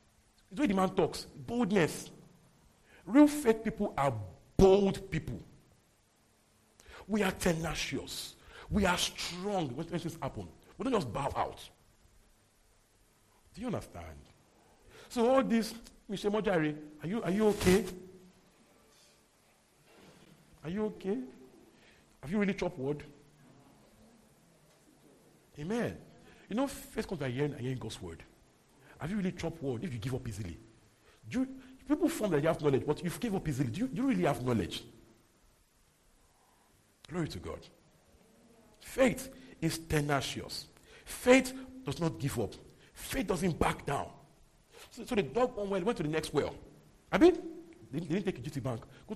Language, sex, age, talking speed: English, male, 50-69, 150 wpm